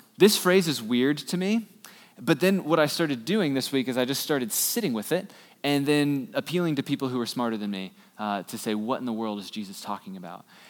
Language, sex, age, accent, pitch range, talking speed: English, male, 20-39, American, 120-170 Hz, 235 wpm